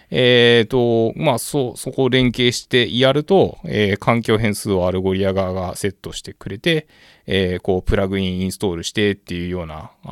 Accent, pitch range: native, 90-120 Hz